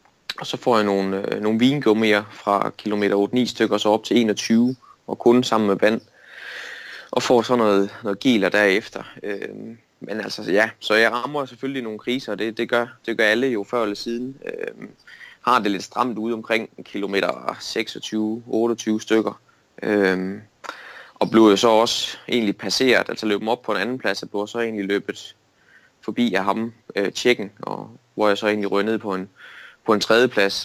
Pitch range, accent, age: 105-120 Hz, native, 20-39